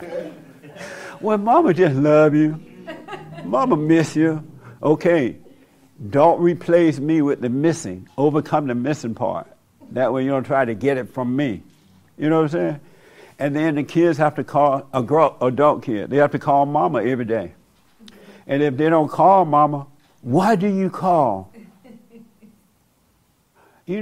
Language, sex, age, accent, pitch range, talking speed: English, male, 60-79, American, 135-170 Hz, 155 wpm